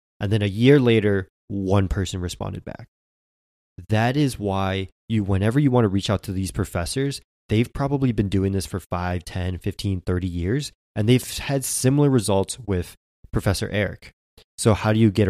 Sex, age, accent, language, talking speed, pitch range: male, 20-39, American, English, 180 wpm, 95-115 Hz